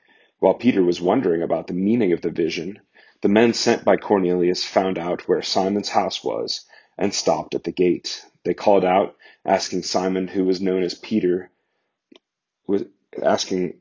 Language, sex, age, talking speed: English, male, 30-49, 160 wpm